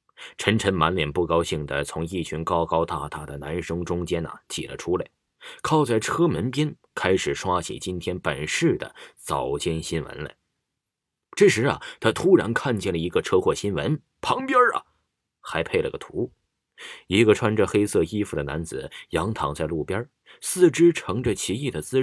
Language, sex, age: Chinese, male, 30-49